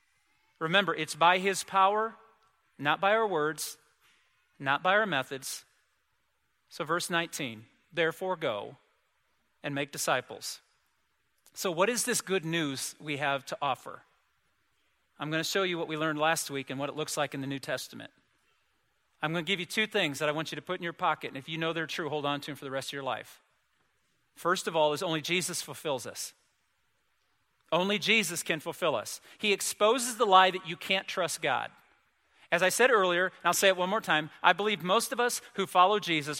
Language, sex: English, male